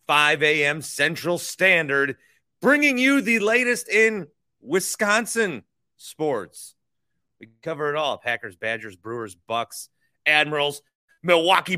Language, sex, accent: English, male, American